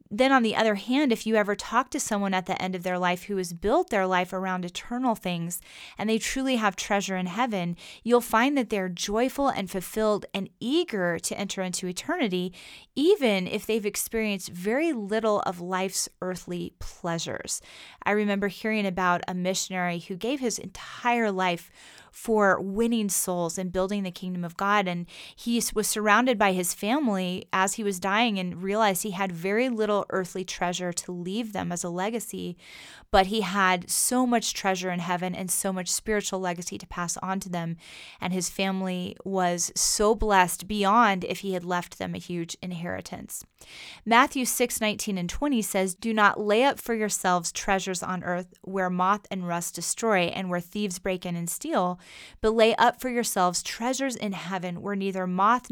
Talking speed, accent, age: 185 wpm, American, 20-39